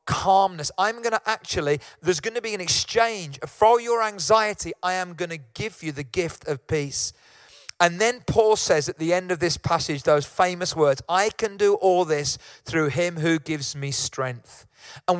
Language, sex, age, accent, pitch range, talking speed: English, male, 40-59, British, 155-210 Hz, 195 wpm